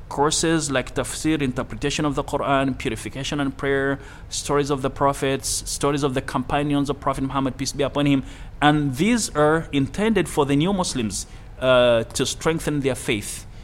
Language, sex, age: English, male, 30-49